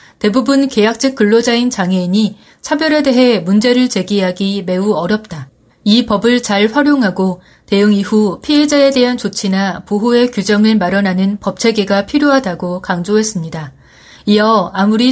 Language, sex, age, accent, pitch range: Korean, female, 30-49, native, 190-250 Hz